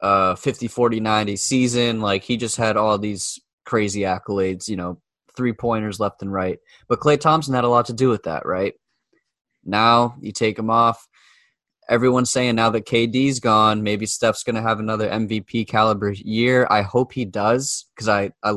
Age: 20-39